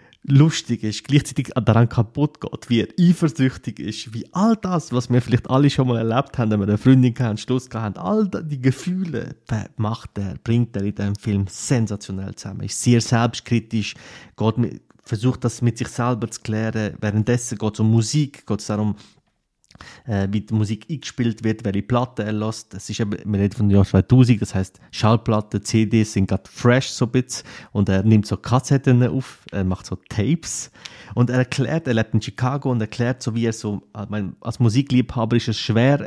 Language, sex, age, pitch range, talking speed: German, male, 30-49, 105-130 Hz, 195 wpm